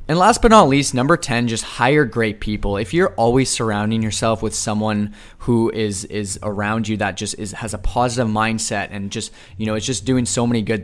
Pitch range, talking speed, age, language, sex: 105-125 Hz, 220 wpm, 20-39, English, male